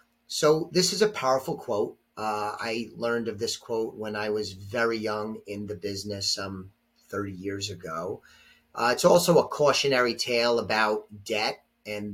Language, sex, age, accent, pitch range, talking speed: English, male, 30-49, American, 105-150 Hz, 165 wpm